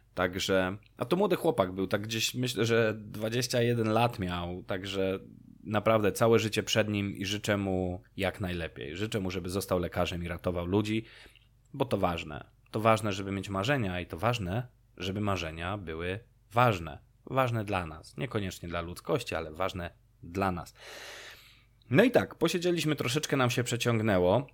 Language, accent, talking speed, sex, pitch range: Polish, native, 160 wpm, male, 95-115 Hz